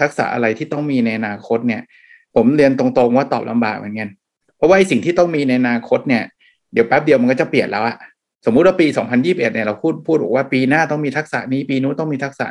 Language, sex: Thai, male